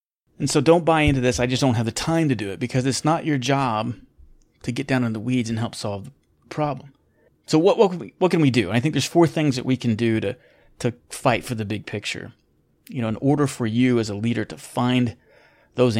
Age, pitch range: 30-49, 115-145 Hz